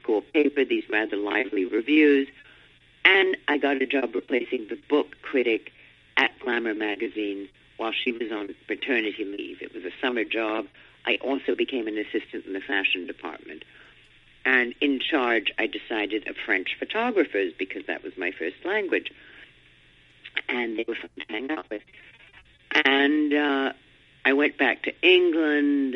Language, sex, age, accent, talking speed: English, female, 50-69, American, 155 wpm